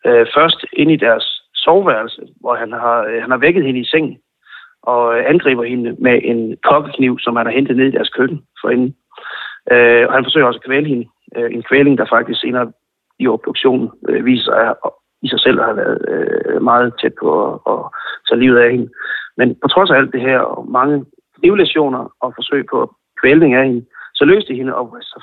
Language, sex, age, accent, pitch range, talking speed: Danish, male, 30-49, native, 125-180 Hz, 195 wpm